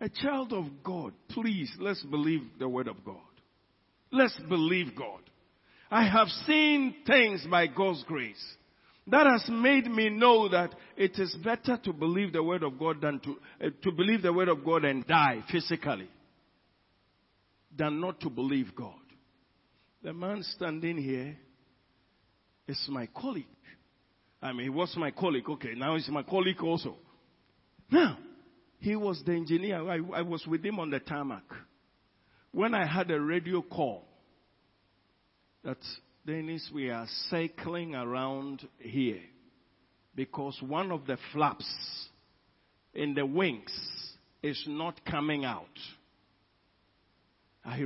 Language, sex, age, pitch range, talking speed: English, male, 50-69, 135-185 Hz, 140 wpm